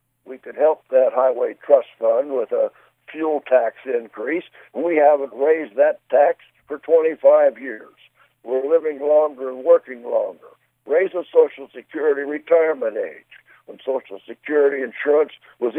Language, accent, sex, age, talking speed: English, American, male, 60-79, 140 wpm